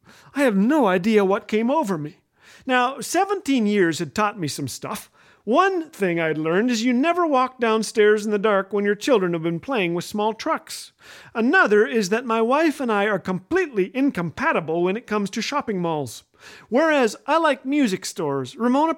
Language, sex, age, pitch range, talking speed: English, male, 40-59, 195-275 Hz, 185 wpm